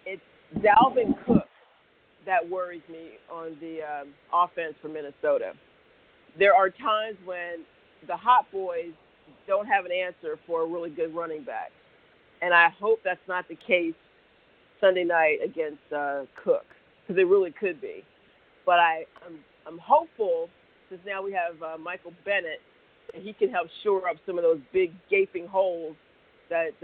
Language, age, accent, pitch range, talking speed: English, 40-59, American, 165-250 Hz, 160 wpm